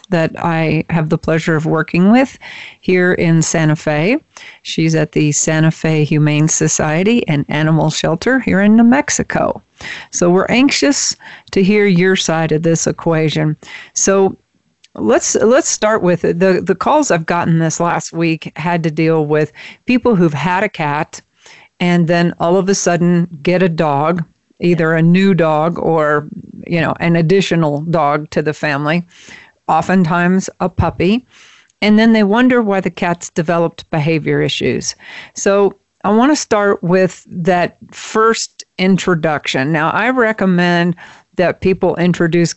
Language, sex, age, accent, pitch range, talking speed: English, female, 40-59, American, 160-185 Hz, 150 wpm